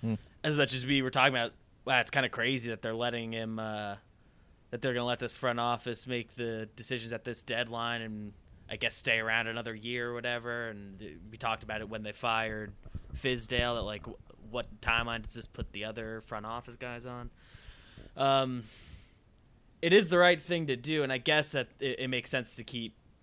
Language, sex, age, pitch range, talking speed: English, male, 10-29, 100-120 Hz, 210 wpm